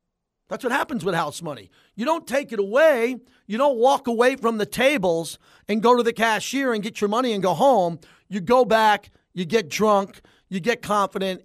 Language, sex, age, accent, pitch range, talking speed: English, male, 40-59, American, 180-235 Hz, 205 wpm